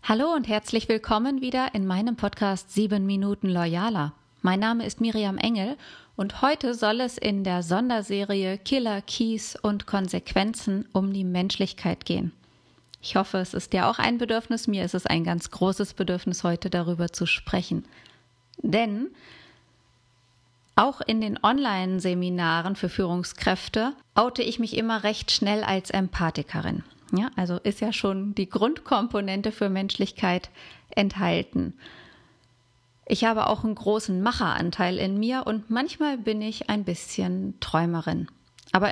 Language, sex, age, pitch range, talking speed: German, female, 30-49, 185-225 Hz, 140 wpm